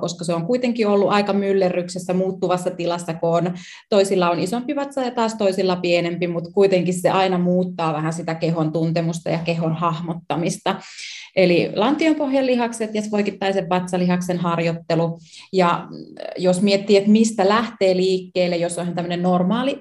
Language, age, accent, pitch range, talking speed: Finnish, 30-49, native, 170-195 Hz, 145 wpm